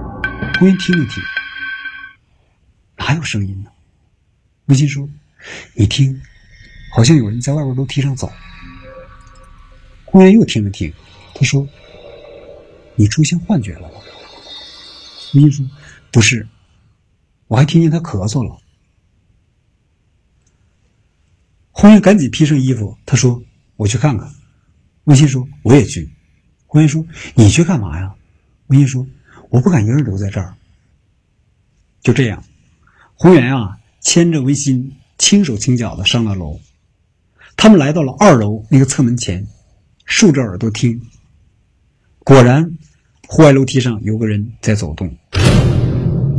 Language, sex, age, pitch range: Chinese, male, 60-79, 100-140 Hz